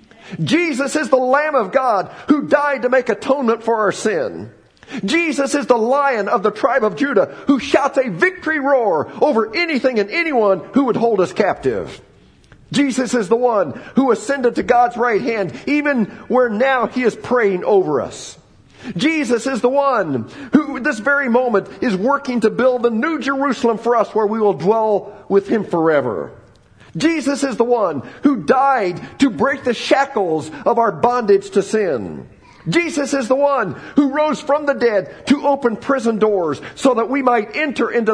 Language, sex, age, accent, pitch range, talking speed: English, male, 50-69, American, 200-275 Hz, 180 wpm